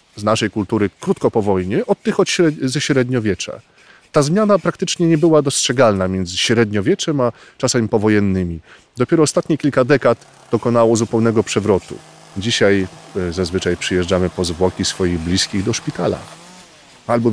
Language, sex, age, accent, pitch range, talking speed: Polish, male, 30-49, native, 90-120 Hz, 130 wpm